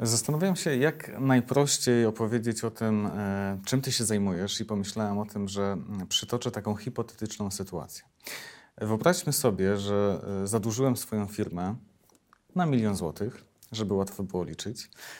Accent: native